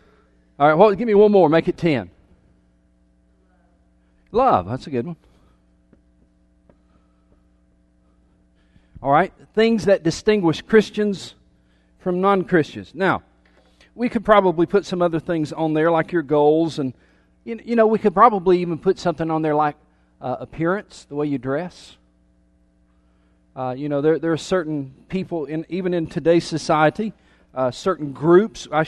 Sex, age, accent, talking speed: male, 40-59, American, 150 wpm